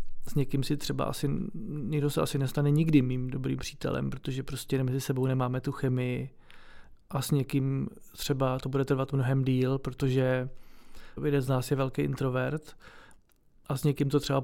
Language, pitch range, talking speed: Czech, 130-145 Hz, 170 wpm